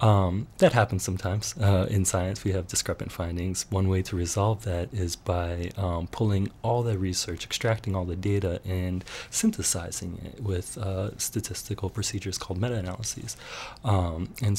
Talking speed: 150 wpm